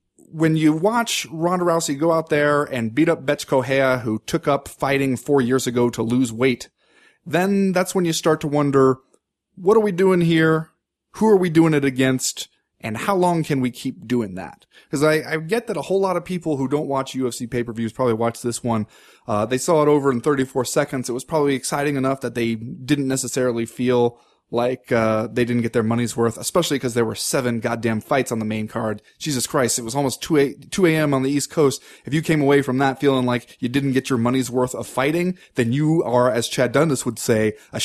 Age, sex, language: 30-49, male, English